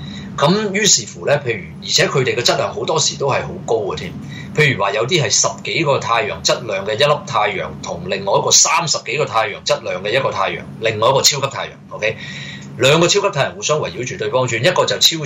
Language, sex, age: Chinese, male, 20-39